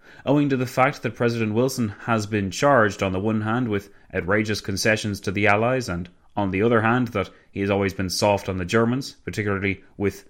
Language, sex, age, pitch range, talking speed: English, male, 30-49, 105-145 Hz, 210 wpm